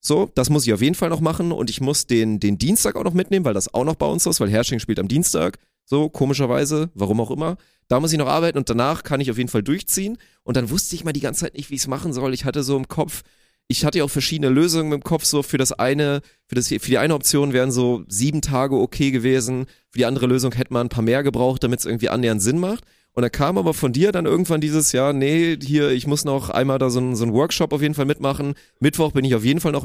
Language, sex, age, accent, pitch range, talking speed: German, male, 30-49, German, 120-155 Hz, 280 wpm